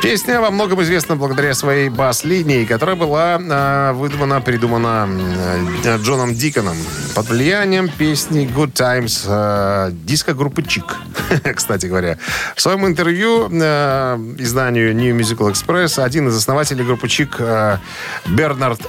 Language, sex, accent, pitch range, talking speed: Russian, male, native, 115-165 Hz, 110 wpm